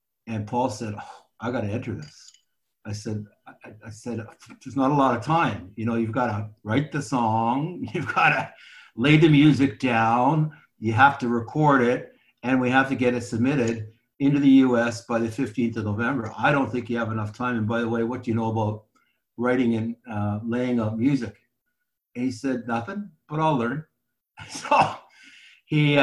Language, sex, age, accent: English, male, 60-79, American